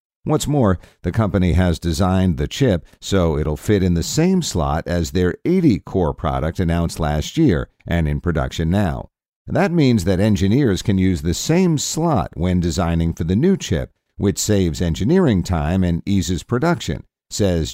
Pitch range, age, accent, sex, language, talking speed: 80-115 Hz, 50-69, American, male, English, 170 wpm